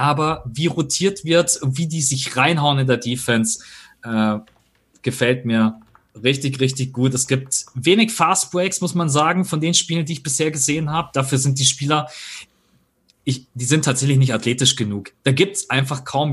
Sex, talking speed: male, 185 wpm